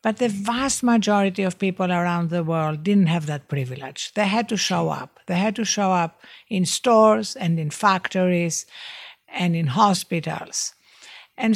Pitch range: 185-230 Hz